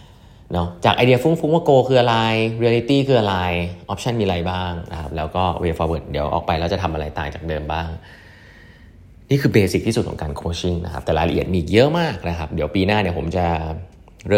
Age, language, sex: 30-49, Thai, male